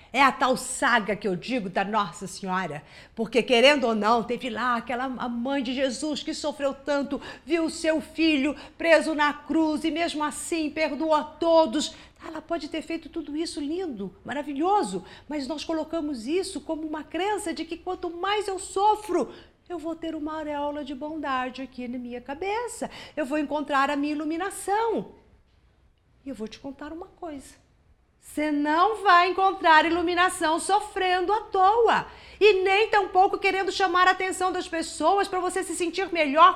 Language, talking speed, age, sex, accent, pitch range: Portuguese, 170 wpm, 50-69, female, Brazilian, 245-345 Hz